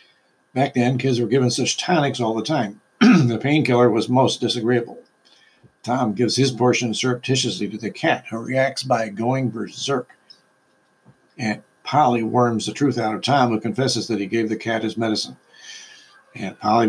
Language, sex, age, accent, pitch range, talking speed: English, male, 60-79, American, 115-135 Hz, 165 wpm